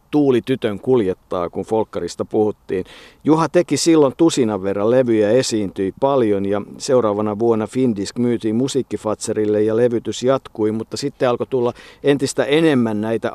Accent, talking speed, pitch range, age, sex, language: native, 135 wpm, 110-130 Hz, 50-69, male, Finnish